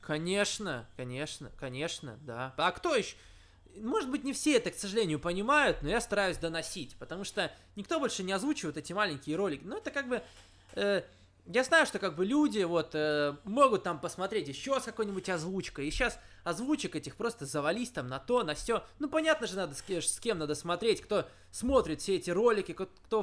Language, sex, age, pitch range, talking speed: Russian, male, 20-39, 135-215 Hz, 195 wpm